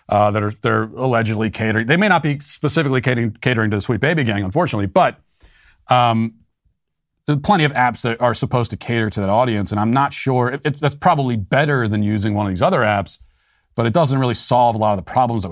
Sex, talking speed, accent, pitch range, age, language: male, 235 wpm, American, 105-125 Hz, 40-59, English